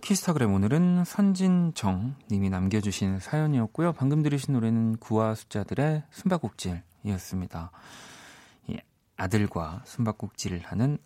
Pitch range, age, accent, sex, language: 95-135 Hz, 40-59, native, male, Korean